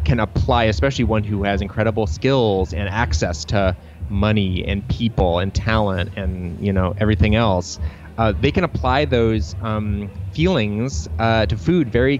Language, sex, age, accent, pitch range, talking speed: English, male, 30-49, American, 90-110 Hz, 155 wpm